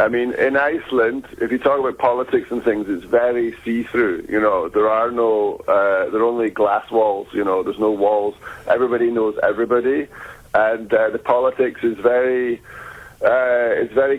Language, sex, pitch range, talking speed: English, male, 120-150 Hz, 180 wpm